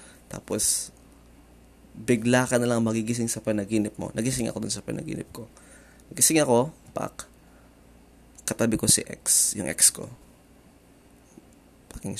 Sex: male